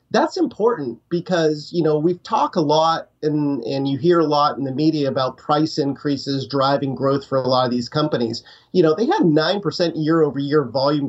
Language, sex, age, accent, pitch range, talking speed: English, male, 40-59, American, 130-160 Hz, 200 wpm